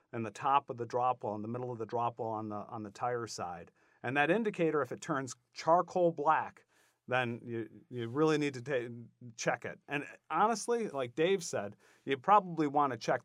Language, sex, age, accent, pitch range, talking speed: English, male, 40-59, American, 115-150 Hz, 210 wpm